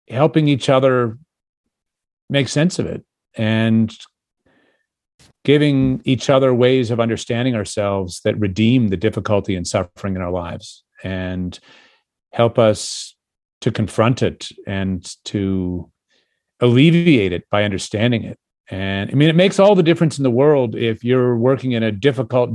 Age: 40-59